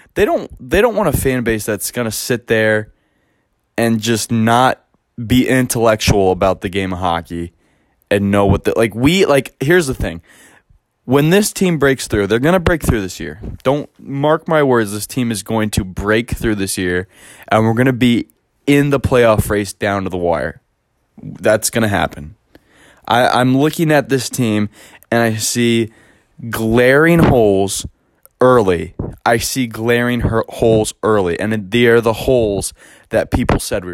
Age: 20-39